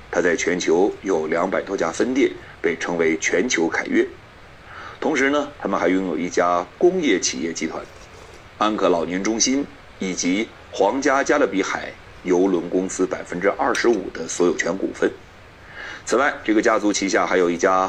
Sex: male